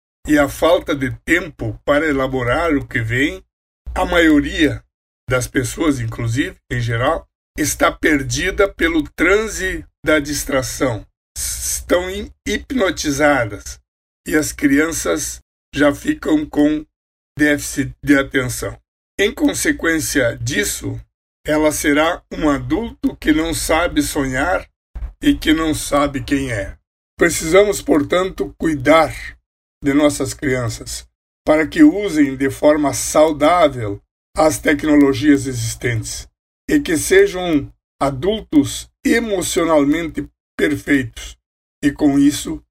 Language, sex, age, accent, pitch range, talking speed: Portuguese, male, 60-79, Brazilian, 120-165 Hz, 105 wpm